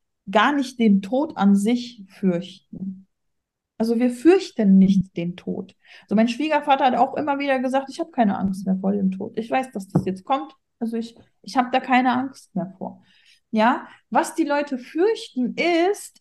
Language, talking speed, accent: German, 190 wpm, German